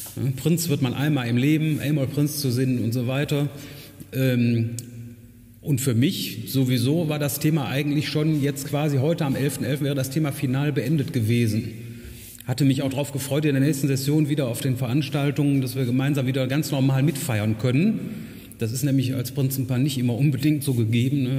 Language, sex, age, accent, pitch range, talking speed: German, male, 30-49, German, 115-140 Hz, 180 wpm